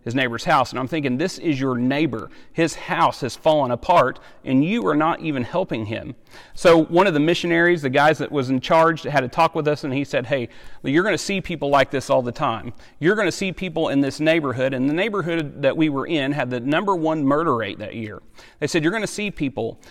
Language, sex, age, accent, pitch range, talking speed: English, male, 40-59, American, 130-165 Hz, 250 wpm